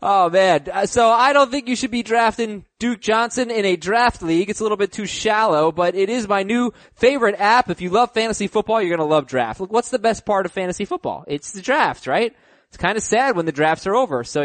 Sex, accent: male, American